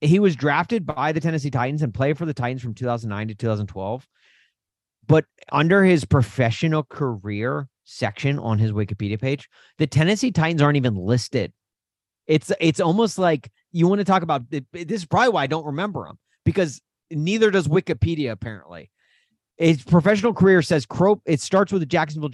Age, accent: 30-49, American